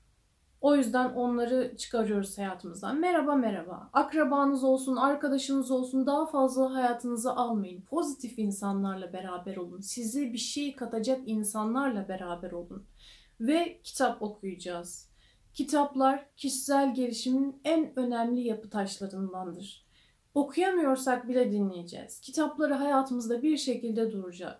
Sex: female